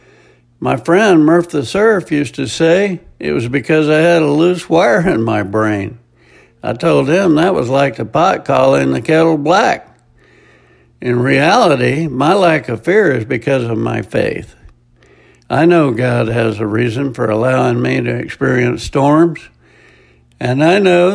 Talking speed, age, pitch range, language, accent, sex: 160 wpm, 60-79, 115-165 Hz, English, American, male